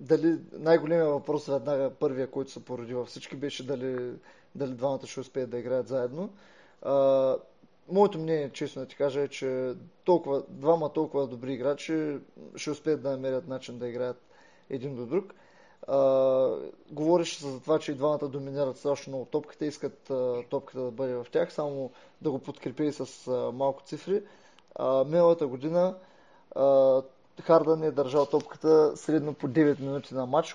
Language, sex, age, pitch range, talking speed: Bulgarian, male, 20-39, 130-155 Hz, 150 wpm